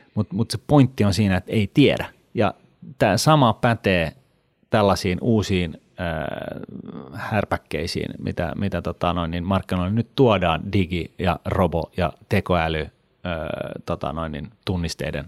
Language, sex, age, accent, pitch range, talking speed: Finnish, male, 30-49, native, 90-115 Hz, 120 wpm